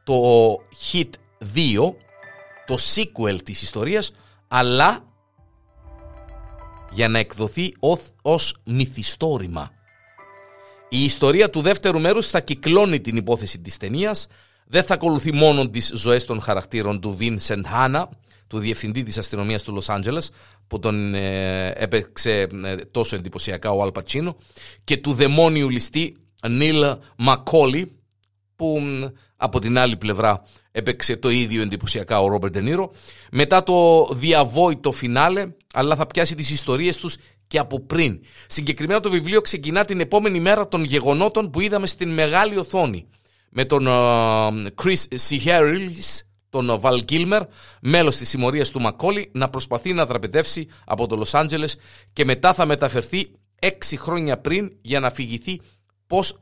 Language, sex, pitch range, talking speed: Greek, male, 110-165 Hz, 140 wpm